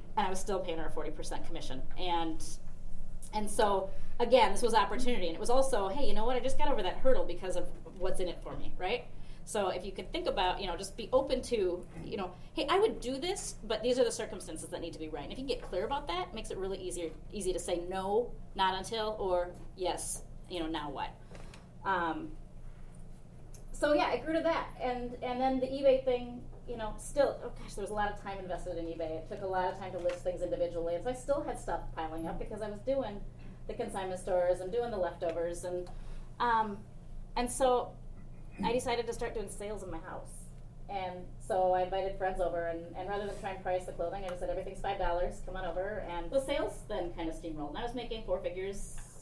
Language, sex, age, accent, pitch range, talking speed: English, female, 30-49, American, 175-225 Hz, 240 wpm